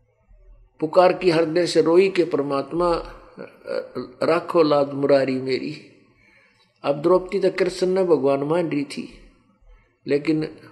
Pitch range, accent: 135-170 Hz, native